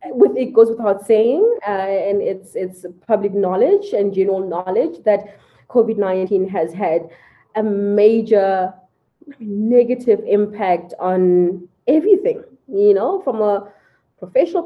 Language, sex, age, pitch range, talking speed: English, female, 20-39, 190-245 Hz, 125 wpm